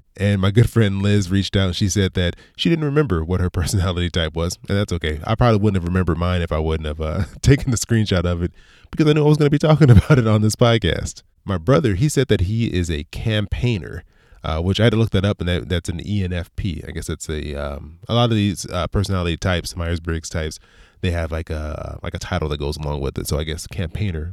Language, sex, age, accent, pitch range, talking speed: English, male, 20-39, American, 85-110 Hz, 255 wpm